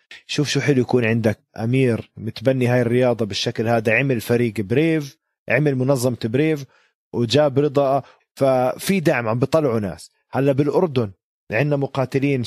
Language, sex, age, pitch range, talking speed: Arabic, male, 20-39, 120-150 Hz, 135 wpm